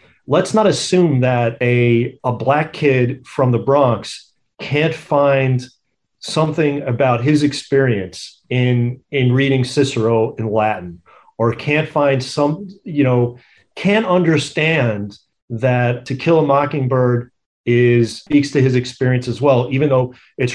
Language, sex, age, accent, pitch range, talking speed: English, male, 40-59, American, 125-150 Hz, 135 wpm